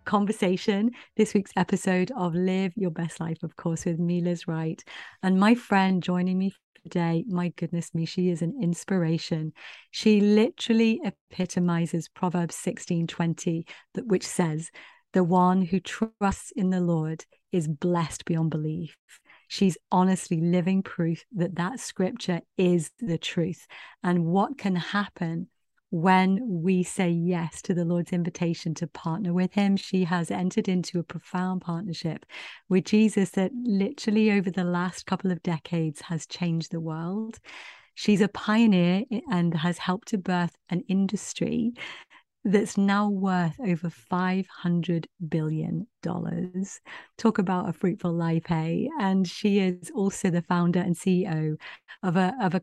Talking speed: 150 wpm